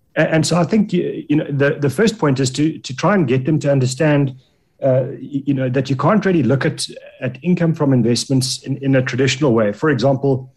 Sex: male